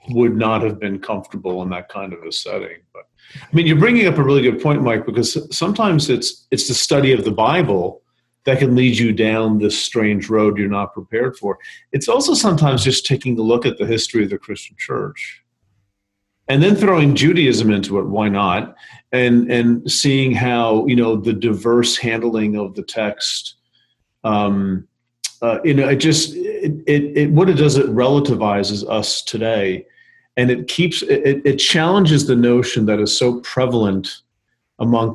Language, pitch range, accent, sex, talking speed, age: English, 105-140 Hz, American, male, 180 wpm, 40-59